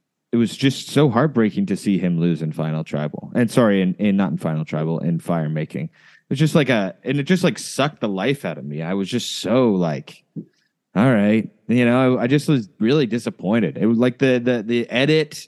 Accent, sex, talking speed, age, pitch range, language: American, male, 230 wpm, 20-39, 100-130 Hz, English